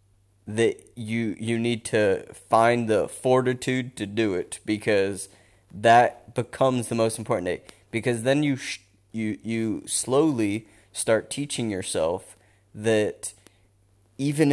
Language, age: English, 30-49